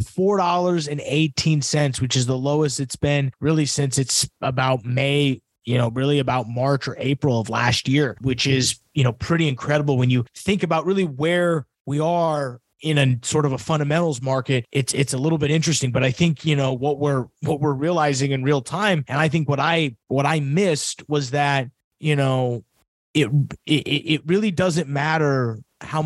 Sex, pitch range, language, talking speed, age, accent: male, 135-165 Hz, English, 185 wpm, 30-49, American